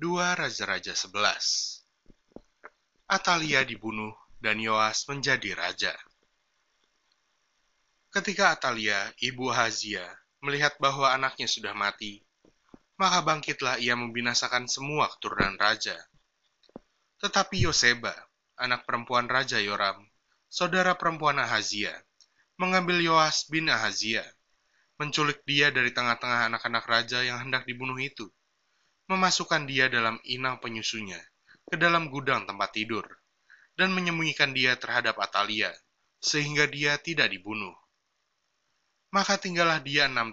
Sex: male